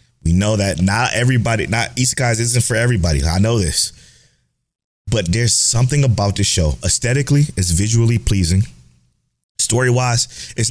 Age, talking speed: 20-39, 140 wpm